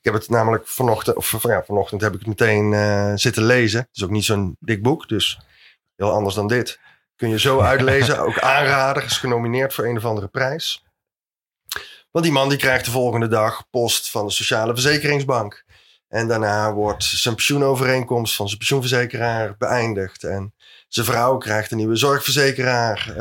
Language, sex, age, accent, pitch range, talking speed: Dutch, male, 20-39, Dutch, 105-130 Hz, 180 wpm